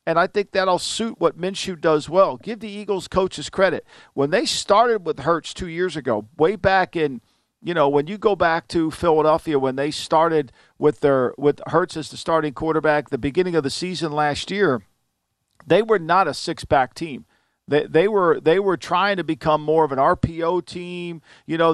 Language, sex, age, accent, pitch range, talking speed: English, male, 50-69, American, 150-180 Hz, 200 wpm